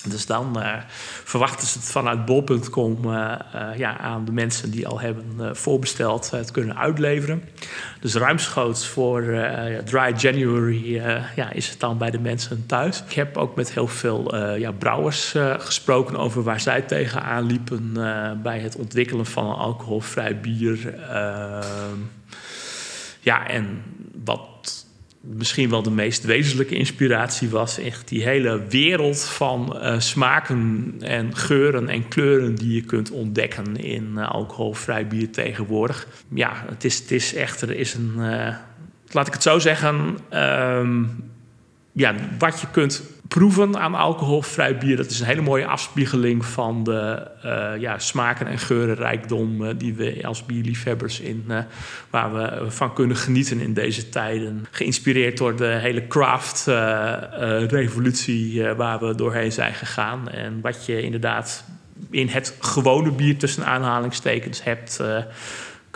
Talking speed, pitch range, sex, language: 150 wpm, 110-130 Hz, male, Dutch